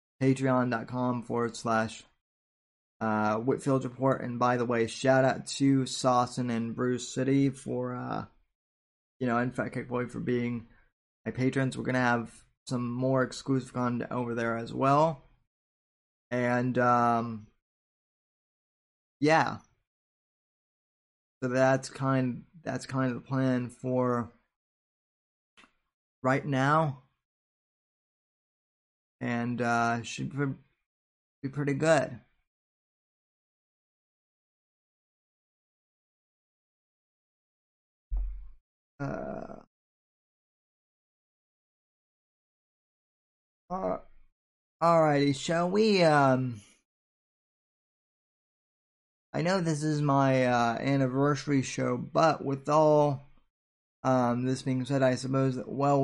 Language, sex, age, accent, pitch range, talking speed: English, male, 20-39, American, 120-135 Hz, 90 wpm